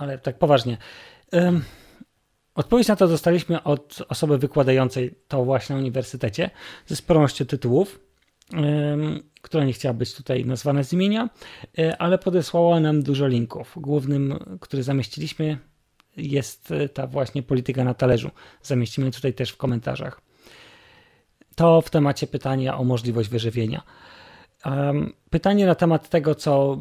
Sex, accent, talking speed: male, native, 125 wpm